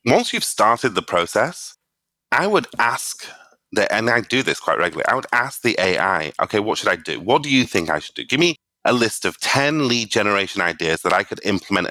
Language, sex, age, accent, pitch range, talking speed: English, male, 30-49, British, 95-125 Hz, 225 wpm